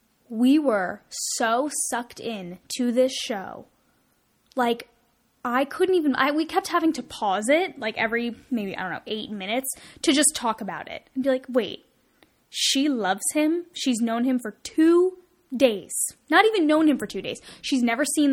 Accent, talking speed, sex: American, 180 wpm, female